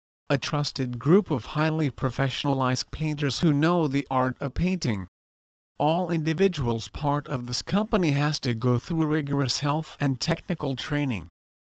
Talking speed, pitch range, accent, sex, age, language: 145 wpm, 125-155 Hz, American, male, 50-69, English